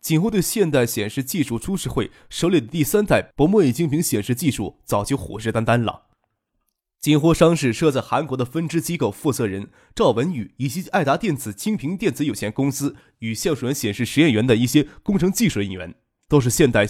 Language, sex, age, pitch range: Chinese, male, 20-39, 115-165 Hz